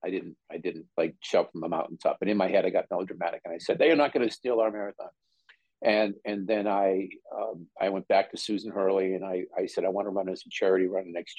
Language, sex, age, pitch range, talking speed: English, male, 50-69, 90-100 Hz, 275 wpm